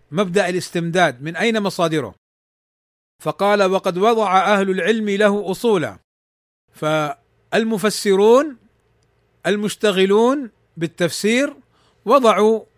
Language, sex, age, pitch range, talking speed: Arabic, male, 40-59, 175-220 Hz, 75 wpm